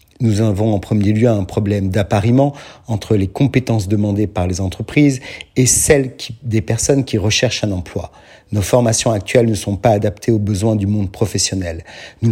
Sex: male